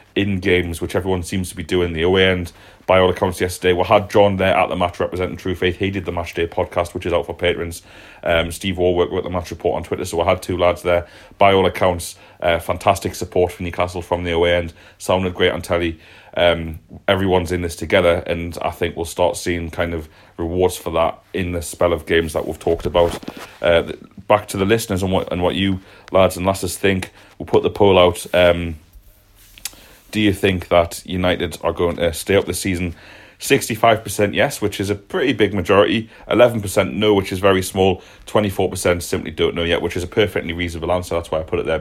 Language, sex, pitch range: English, male, 85-100 Hz